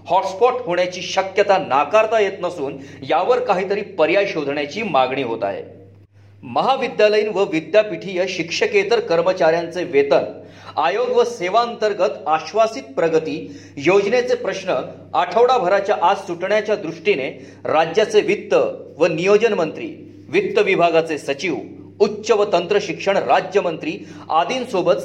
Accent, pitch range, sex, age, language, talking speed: native, 165-230 Hz, male, 40-59, Marathi, 85 wpm